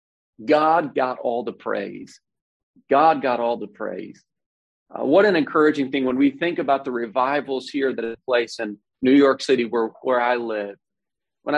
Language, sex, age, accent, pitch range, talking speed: English, male, 40-59, American, 115-135 Hz, 175 wpm